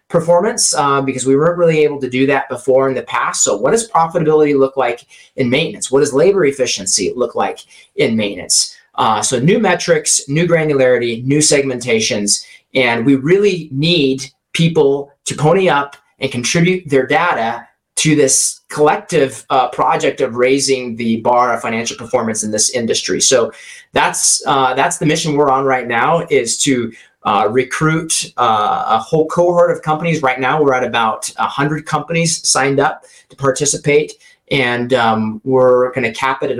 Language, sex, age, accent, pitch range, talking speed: English, male, 30-49, American, 130-165 Hz, 170 wpm